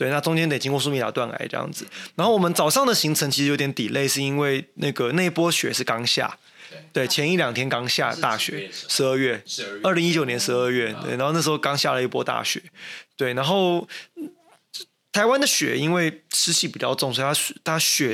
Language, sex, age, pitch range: Chinese, male, 20-39, 125-160 Hz